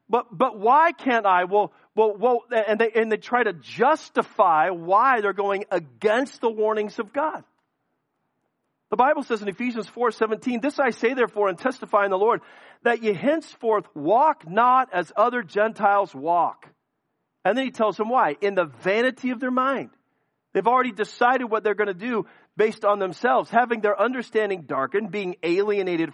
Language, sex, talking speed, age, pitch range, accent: English, male, 175 wpm, 40-59, 185-250 Hz, American